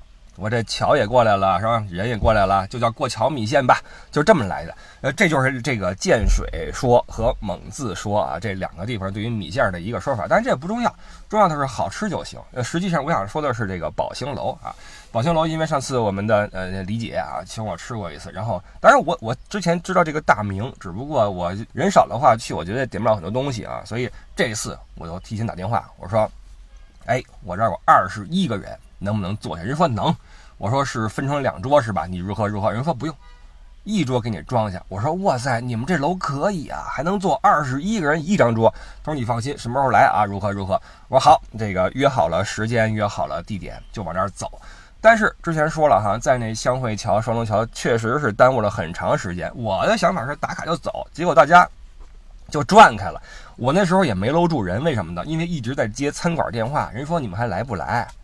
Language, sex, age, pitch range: Chinese, male, 20-39, 100-140 Hz